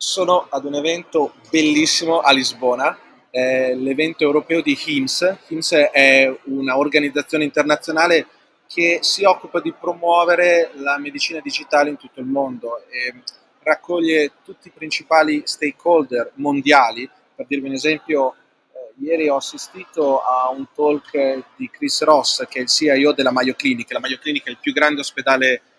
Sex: male